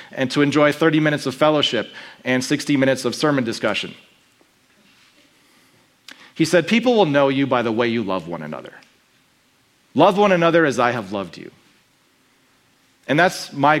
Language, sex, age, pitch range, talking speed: English, male, 40-59, 120-155 Hz, 160 wpm